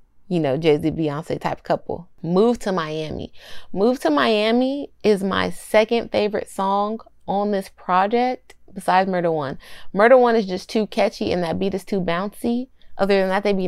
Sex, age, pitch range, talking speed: female, 20-39, 170-225 Hz, 175 wpm